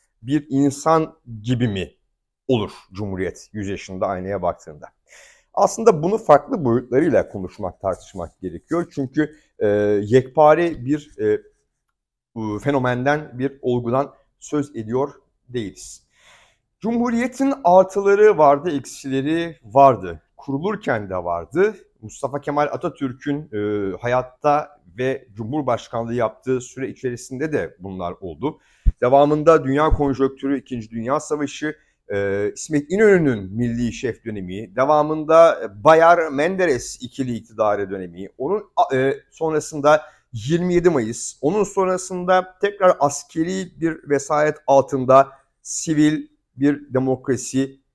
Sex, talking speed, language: male, 105 wpm, Turkish